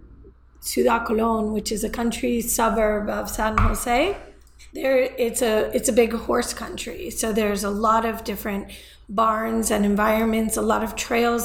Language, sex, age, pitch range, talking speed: English, female, 30-49, 215-255 Hz, 155 wpm